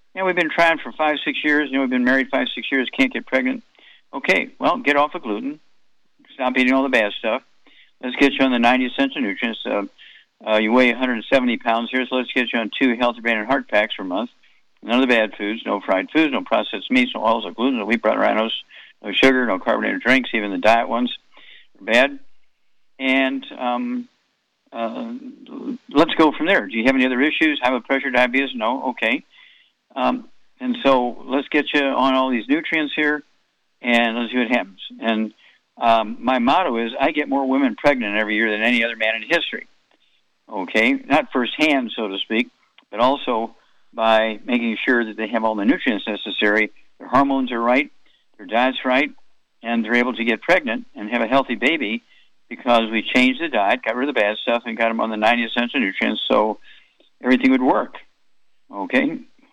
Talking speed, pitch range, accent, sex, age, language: 205 wpm, 115-145 Hz, American, male, 50-69, English